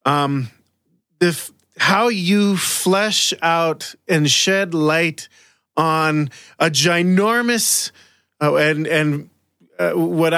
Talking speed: 105 wpm